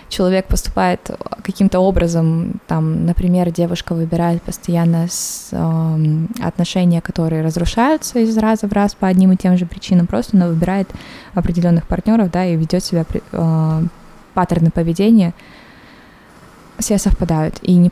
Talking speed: 135 wpm